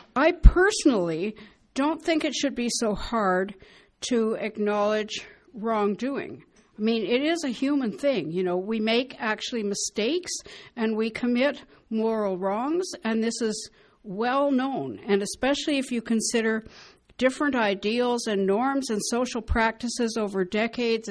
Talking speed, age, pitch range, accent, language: 140 wpm, 60-79, 205-255 Hz, American, English